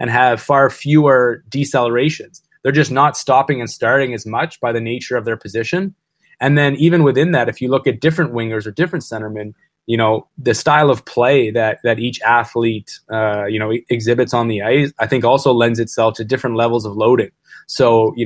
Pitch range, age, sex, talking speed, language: 115-130 Hz, 20-39, male, 205 wpm, English